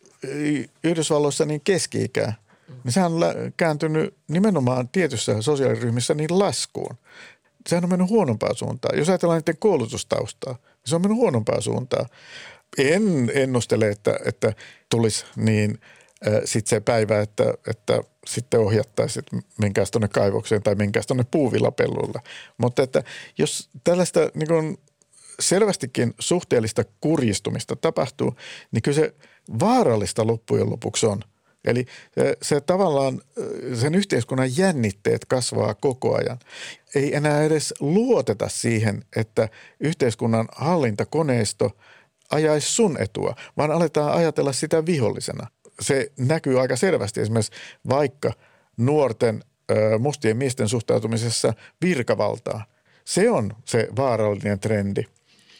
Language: Finnish